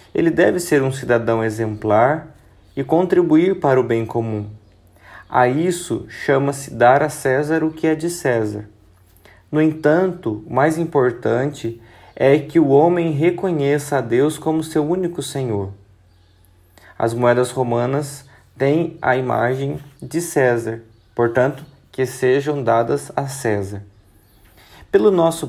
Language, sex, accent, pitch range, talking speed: Portuguese, male, Brazilian, 110-155 Hz, 130 wpm